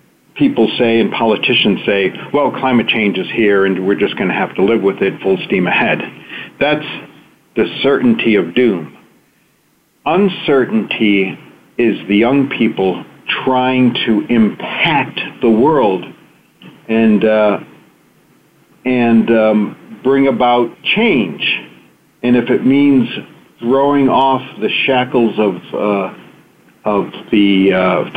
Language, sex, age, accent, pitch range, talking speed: English, male, 50-69, American, 105-130 Hz, 125 wpm